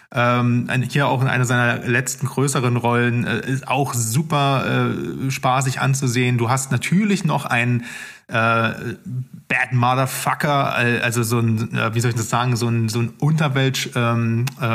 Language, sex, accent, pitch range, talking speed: German, male, German, 120-140 Hz, 160 wpm